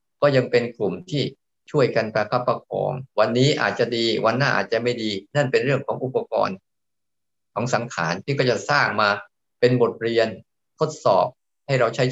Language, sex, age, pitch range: Thai, male, 20-39, 110-140 Hz